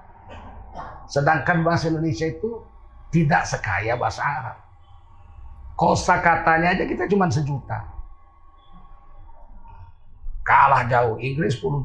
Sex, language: male, Indonesian